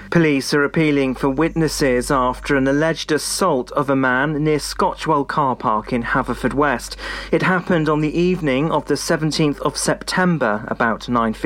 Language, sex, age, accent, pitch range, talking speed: English, male, 40-59, British, 125-160 Hz, 155 wpm